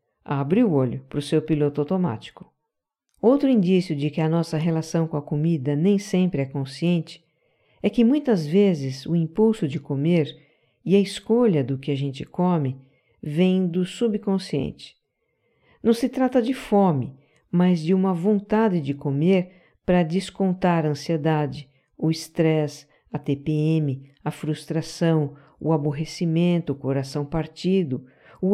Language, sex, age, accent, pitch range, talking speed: Portuguese, female, 50-69, Brazilian, 145-185 Hz, 145 wpm